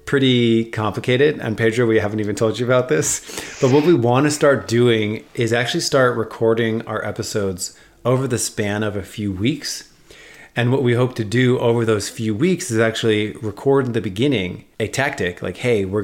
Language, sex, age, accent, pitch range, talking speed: English, male, 30-49, American, 100-120 Hz, 195 wpm